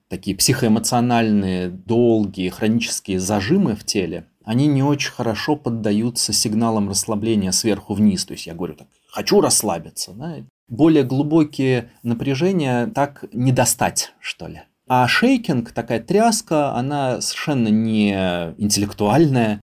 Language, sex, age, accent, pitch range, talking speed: Russian, male, 30-49, native, 100-135 Hz, 120 wpm